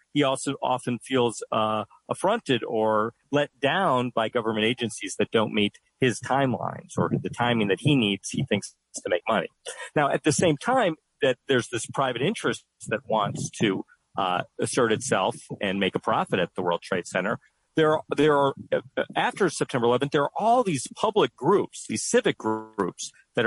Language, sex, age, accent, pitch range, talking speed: English, male, 40-59, American, 115-145 Hz, 180 wpm